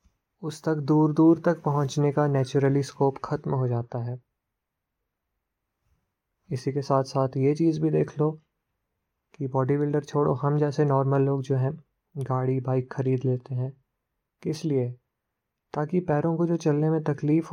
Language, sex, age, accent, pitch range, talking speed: Hindi, male, 20-39, native, 130-155 Hz, 160 wpm